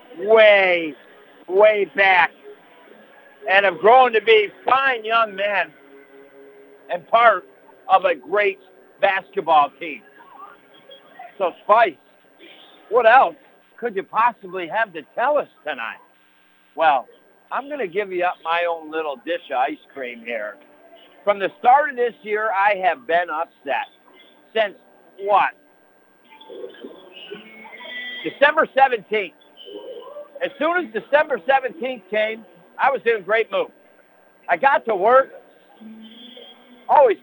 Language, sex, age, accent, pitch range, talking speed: English, male, 60-79, American, 195-290 Hz, 120 wpm